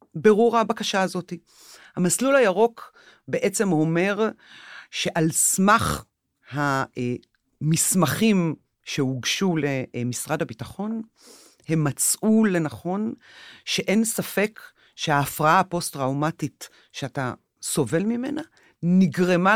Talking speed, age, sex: 75 wpm, 40-59, female